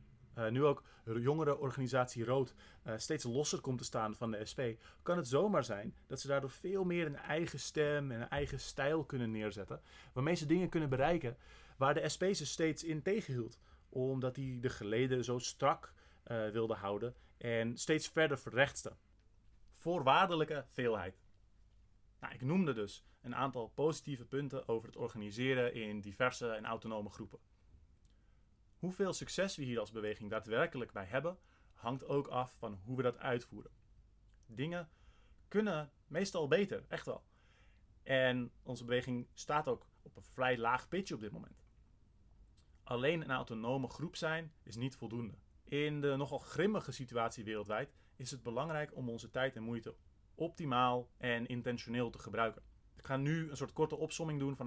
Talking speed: 160 wpm